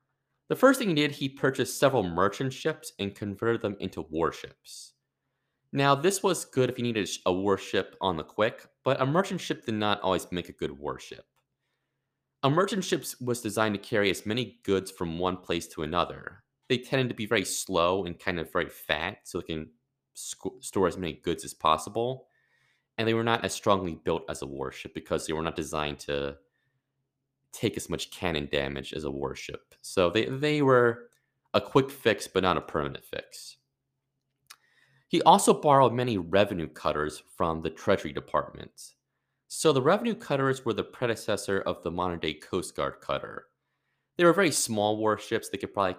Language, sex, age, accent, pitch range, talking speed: English, male, 30-49, American, 90-135 Hz, 185 wpm